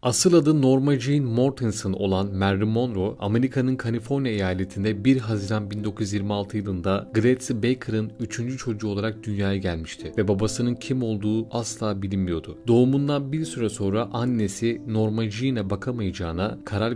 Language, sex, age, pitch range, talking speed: Turkish, male, 30-49, 100-125 Hz, 130 wpm